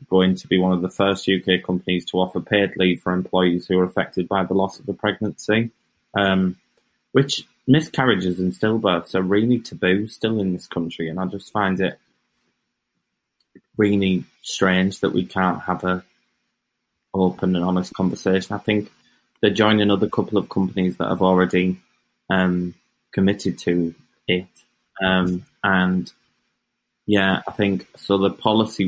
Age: 20-39